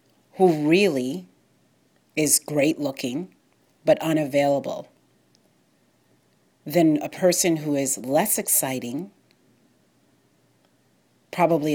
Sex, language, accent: female, English, American